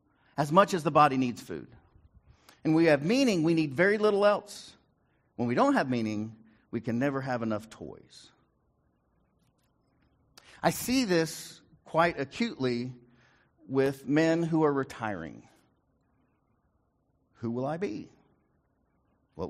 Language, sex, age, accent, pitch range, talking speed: English, male, 50-69, American, 130-180 Hz, 130 wpm